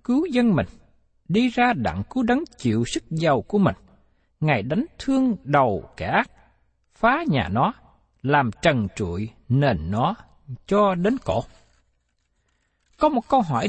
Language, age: Vietnamese, 60-79